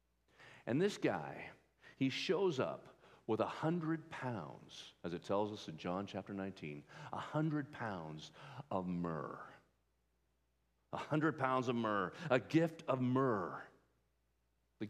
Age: 50-69